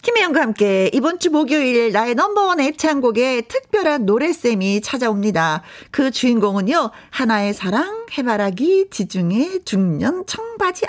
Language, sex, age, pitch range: Korean, female, 40-59, 205-315 Hz